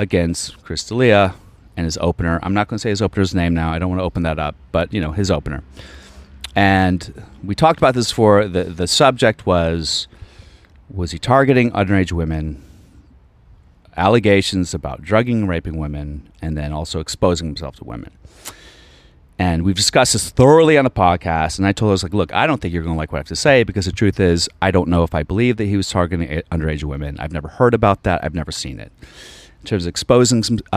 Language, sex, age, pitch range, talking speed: English, male, 30-49, 80-105 Hz, 215 wpm